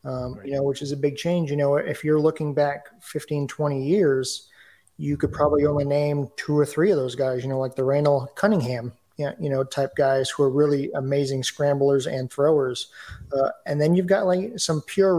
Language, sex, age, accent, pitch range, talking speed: English, male, 30-49, American, 140-170 Hz, 210 wpm